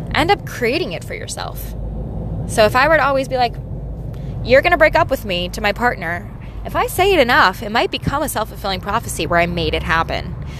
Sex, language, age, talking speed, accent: female, English, 20-39, 225 wpm, American